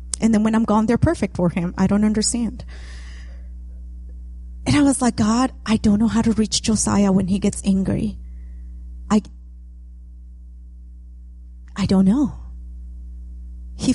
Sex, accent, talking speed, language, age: female, American, 140 wpm, English, 30-49